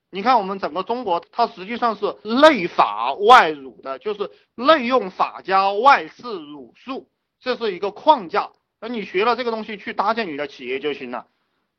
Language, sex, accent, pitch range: Chinese, male, native, 165-235 Hz